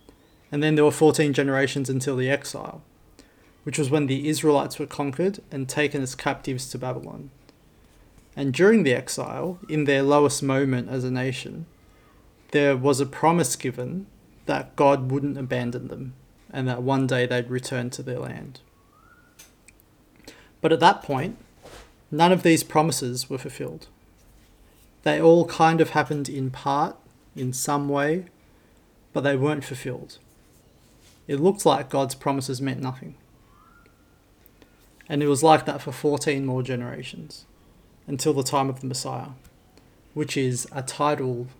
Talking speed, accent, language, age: 145 wpm, Australian, English, 30-49